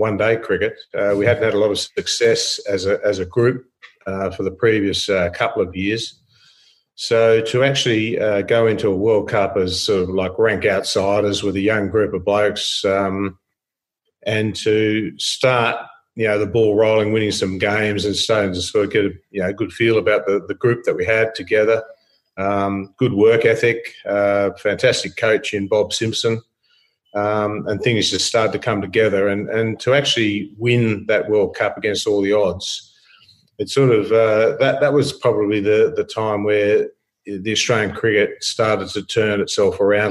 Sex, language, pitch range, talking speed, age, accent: male, English, 100-135 Hz, 190 wpm, 40-59, Australian